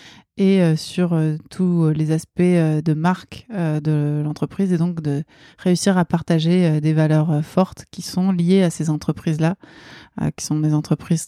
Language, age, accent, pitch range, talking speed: French, 20-39, French, 155-185 Hz, 195 wpm